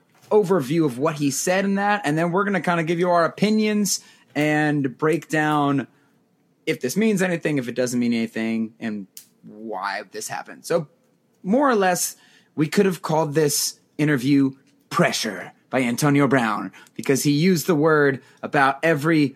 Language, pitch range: English, 125-170 Hz